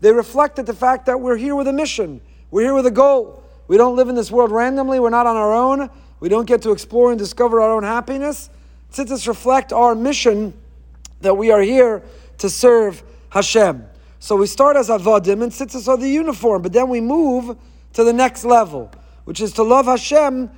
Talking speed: 205 wpm